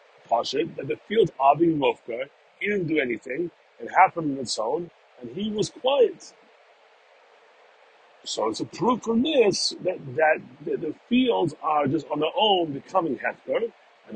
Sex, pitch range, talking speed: male, 160-245 Hz, 155 wpm